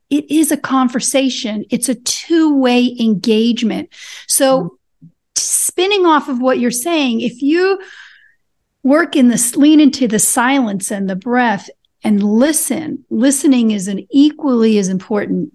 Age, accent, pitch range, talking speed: 40-59, American, 205-270 Hz, 135 wpm